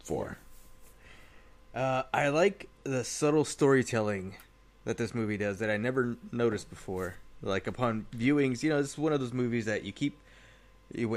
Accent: American